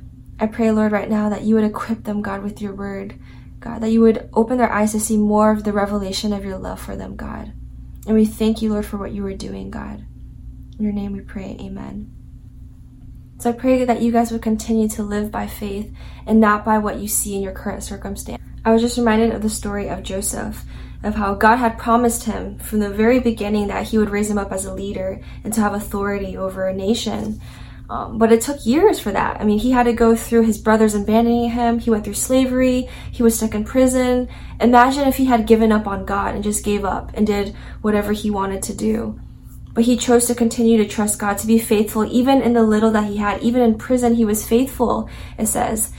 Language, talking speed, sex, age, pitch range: English, 235 wpm, female, 20-39, 205-230 Hz